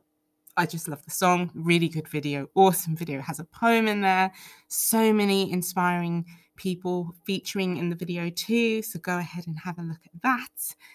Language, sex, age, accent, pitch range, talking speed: English, female, 20-39, British, 155-195 Hz, 180 wpm